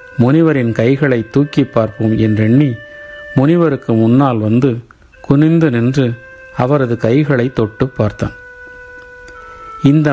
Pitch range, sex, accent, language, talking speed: 120-170 Hz, male, native, Tamil, 90 wpm